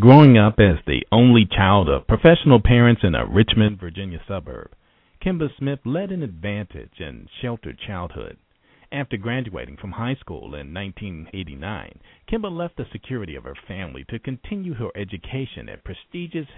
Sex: male